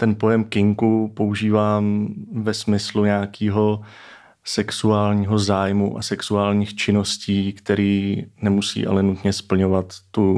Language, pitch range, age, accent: Czech, 95-105 Hz, 30-49, native